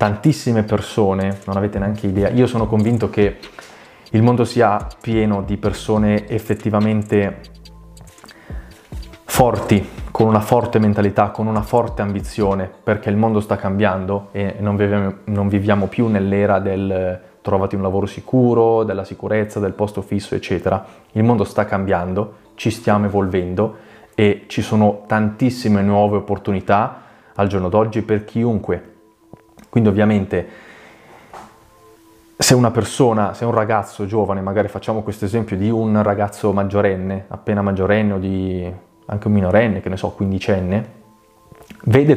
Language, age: Italian, 20-39